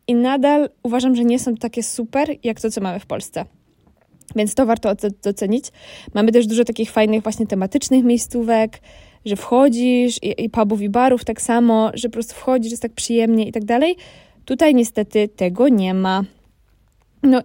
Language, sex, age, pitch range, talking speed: Polish, female, 20-39, 215-245 Hz, 175 wpm